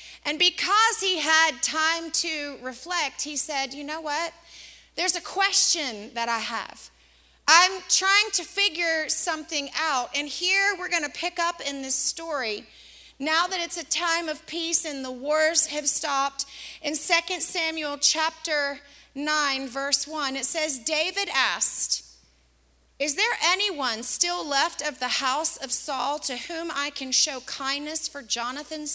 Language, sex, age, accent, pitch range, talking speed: English, female, 30-49, American, 270-345 Hz, 155 wpm